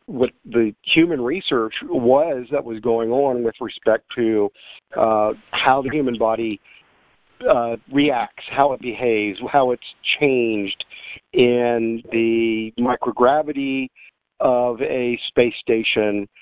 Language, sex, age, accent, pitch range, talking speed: English, male, 50-69, American, 110-130 Hz, 115 wpm